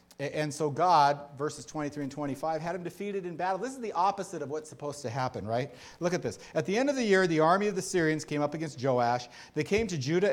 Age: 40-59